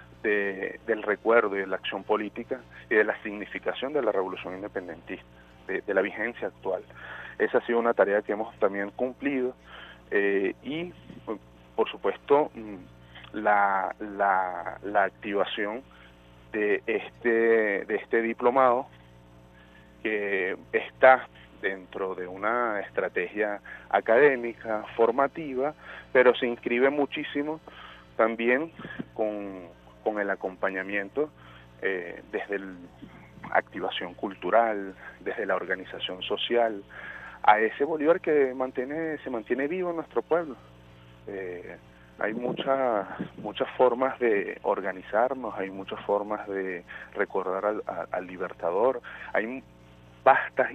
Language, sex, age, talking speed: Spanish, male, 40-59, 115 wpm